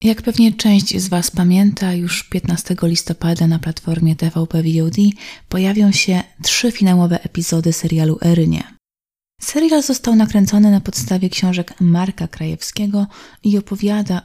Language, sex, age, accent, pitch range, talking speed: Polish, female, 30-49, native, 165-200 Hz, 125 wpm